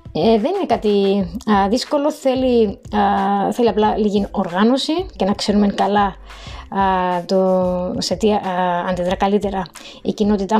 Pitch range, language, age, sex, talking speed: 195-230 Hz, Greek, 20-39, female, 135 wpm